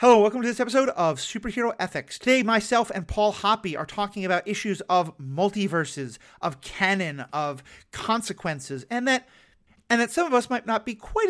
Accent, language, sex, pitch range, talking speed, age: American, English, male, 165-245 Hz, 180 wpm, 40-59